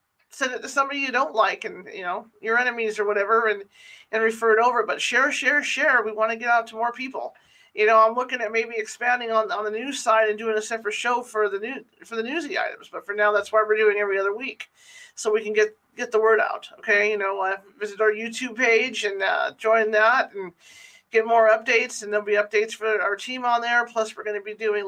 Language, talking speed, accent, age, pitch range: English, 250 wpm, American, 40-59, 210-245 Hz